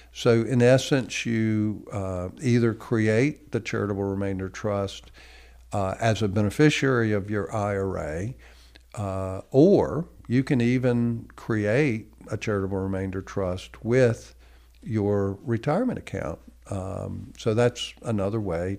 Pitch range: 100-130 Hz